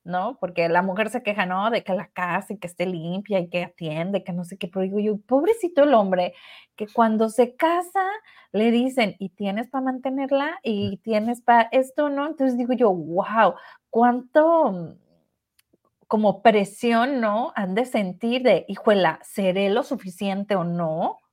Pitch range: 185-240 Hz